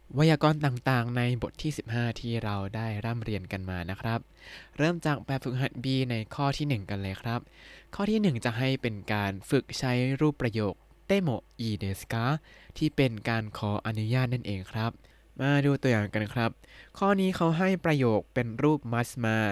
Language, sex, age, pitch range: Thai, male, 20-39, 110-150 Hz